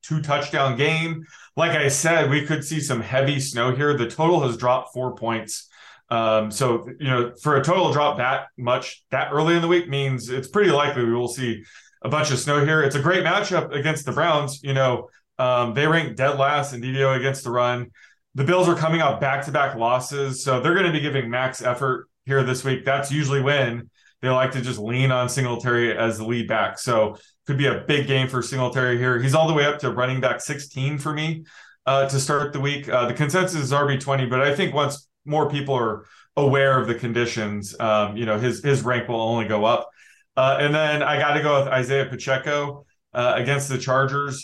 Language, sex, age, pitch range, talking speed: English, male, 20-39, 125-150 Hz, 220 wpm